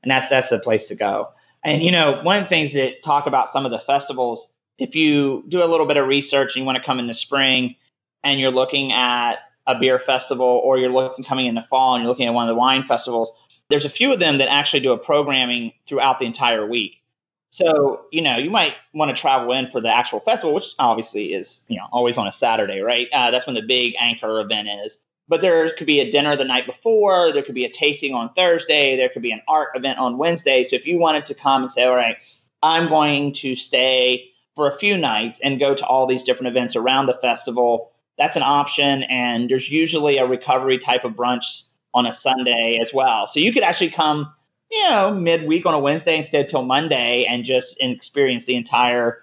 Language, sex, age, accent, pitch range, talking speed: English, male, 30-49, American, 125-145 Hz, 235 wpm